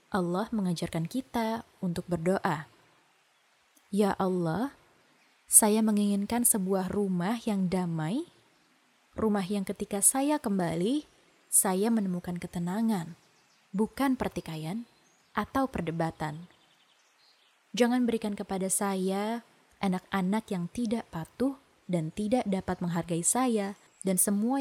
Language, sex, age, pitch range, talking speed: Indonesian, female, 20-39, 180-225 Hz, 100 wpm